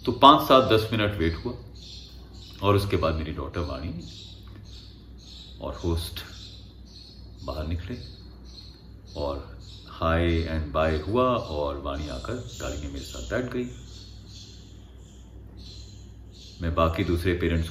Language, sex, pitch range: Hindi, male, 85-100 Hz